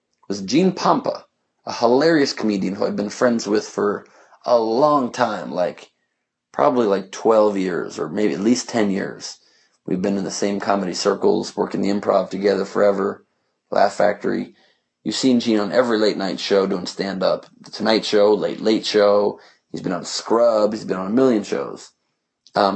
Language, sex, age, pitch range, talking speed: English, male, 30-49, 100-110 Hz, 175 wpm